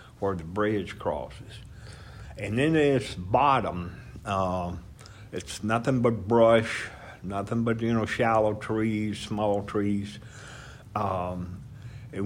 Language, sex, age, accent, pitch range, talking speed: English, male, 60-79, American, 105-135 Hz, 115 wpm